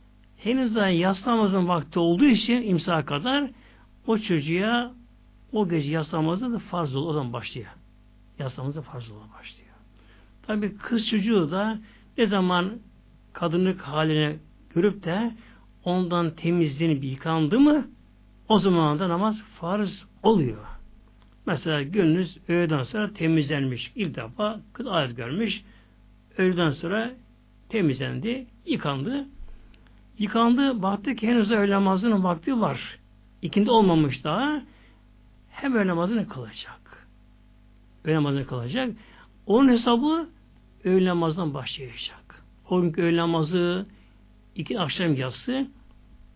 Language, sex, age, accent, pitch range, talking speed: Turkish, male, 60-79, native, 135-215 Hz, 105 wpm